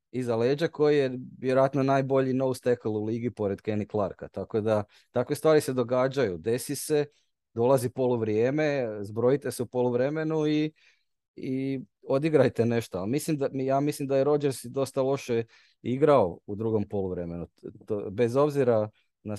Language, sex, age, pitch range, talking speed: Croatian, male, 30-49, 110-140 Hz, 145 wpm